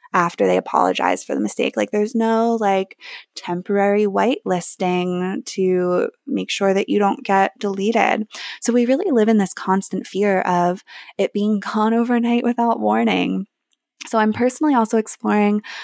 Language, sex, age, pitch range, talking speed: English, female, 20-39, 185-230 Hz, 155 wpm